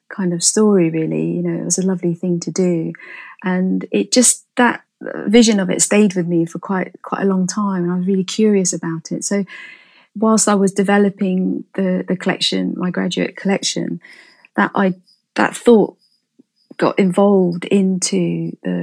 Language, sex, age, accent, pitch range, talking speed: English, female, 30-49, British, 175-195 Hz, 175 wpm